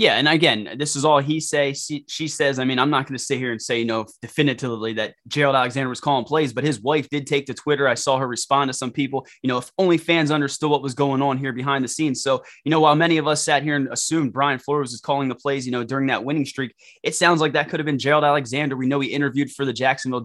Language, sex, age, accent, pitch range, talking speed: English, male, 20-39, American, 130-150 Hz, 290 wpm